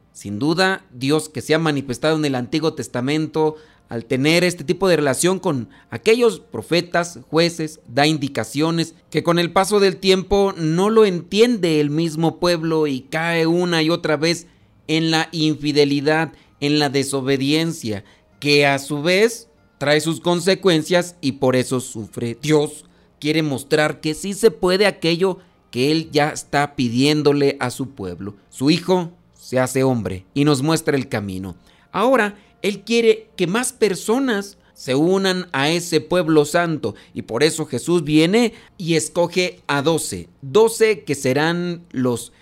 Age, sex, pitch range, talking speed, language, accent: 40-59, male, 135-180 Hz, 155 wpm, Spanish, Mexican